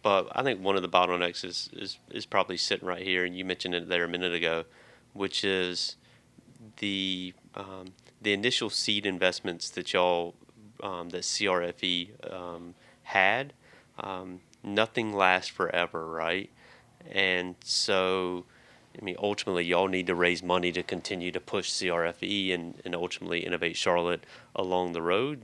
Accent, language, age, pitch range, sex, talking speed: American, English, 30-49, 85-95 Hz, male, 155 wpm